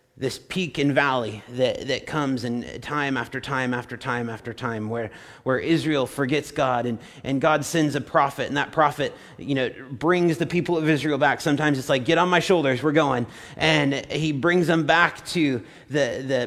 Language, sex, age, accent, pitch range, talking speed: English, male, 30-49, American, 130-160 Hz, 195 wpm